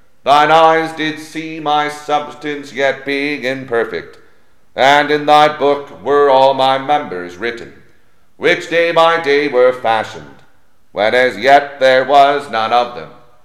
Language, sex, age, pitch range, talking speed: English, male, 40-59, 115-150 Hz, 145 wpm